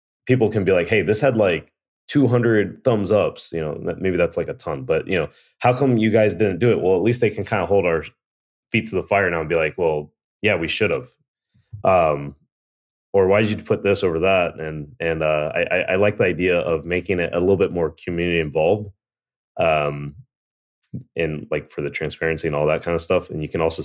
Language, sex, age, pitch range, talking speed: English, male, 20-39, 80-110 Hz, 230 wpm